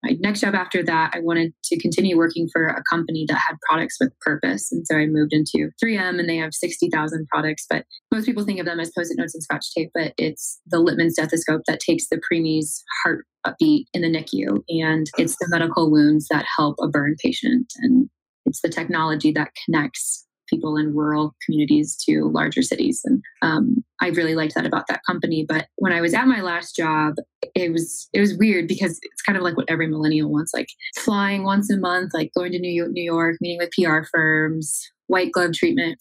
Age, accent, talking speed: 20-39, American, 215 wpm